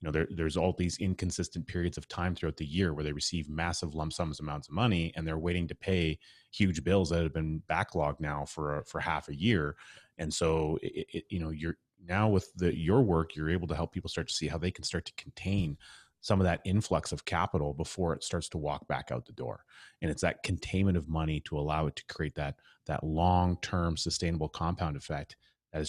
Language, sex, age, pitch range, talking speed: English, male, 30-49, 80-90 Hz, 230 wpm